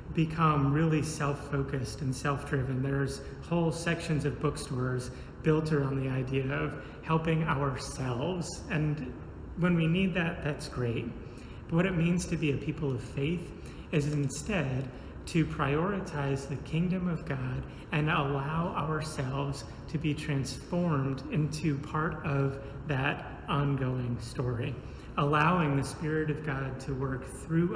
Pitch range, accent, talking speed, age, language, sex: 135-155 Hz, American, 135 wpm, 30-49, English, male